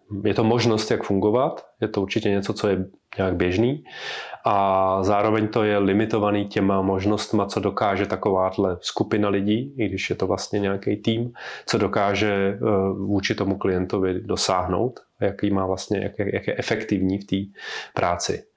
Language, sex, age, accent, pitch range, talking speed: Czech, male, 30-49, native, 100-110 Hz, 150 wpm